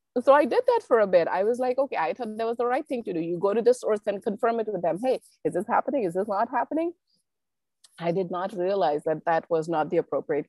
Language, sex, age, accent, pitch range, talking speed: English, female, 30-49, Indian, 170-230 Hz, 275 wpm